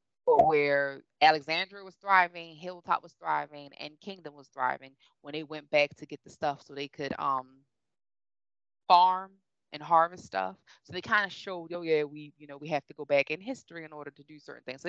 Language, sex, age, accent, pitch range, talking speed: English, female, 20-39, American, 145-190 Hz, 205 wpm